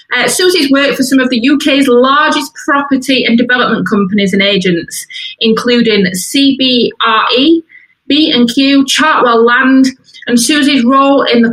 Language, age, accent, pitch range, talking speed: English, 30-49, British, 200-255 Hz, 130 wpm